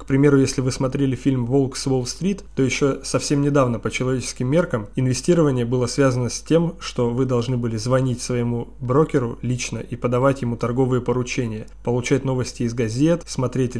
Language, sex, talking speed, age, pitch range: Russian, male, 170 wpm, 20-39, 120-140 Hz